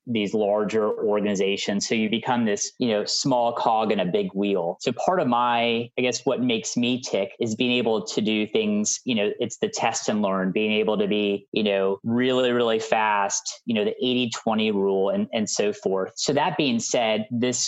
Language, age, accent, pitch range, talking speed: English, 30-49, American, 105-145 Hz, 210 wpm